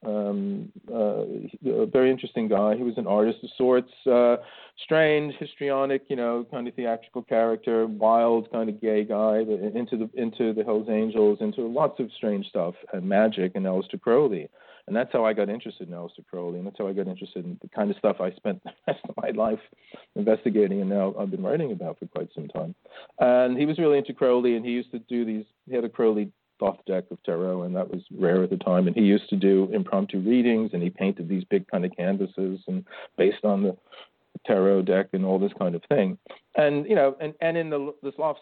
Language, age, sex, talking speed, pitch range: English, 40-59, male, 225 wpm, 100-130 Hz